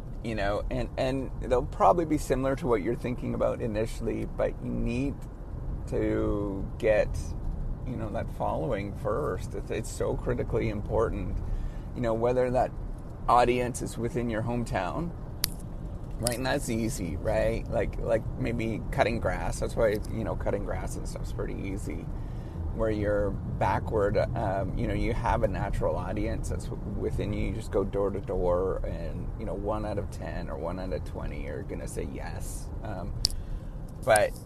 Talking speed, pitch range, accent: 170 wpm, 100-120 Hz, American